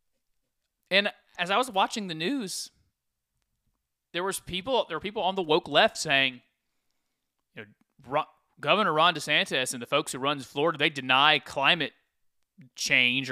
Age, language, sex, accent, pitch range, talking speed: 30-49, English, male, American, 130-165 Hz, 155 wpm